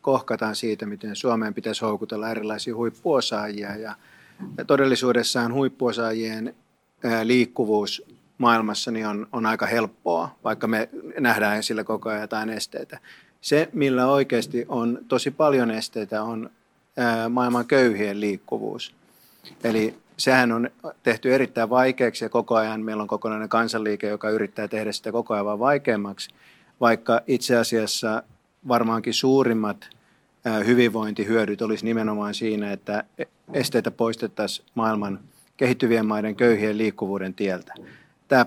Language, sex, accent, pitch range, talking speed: Finnish, male, native, 110-120 Hz, 115 wpm